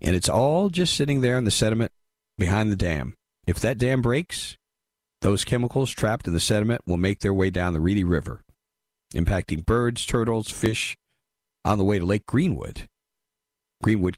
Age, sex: 40-59, male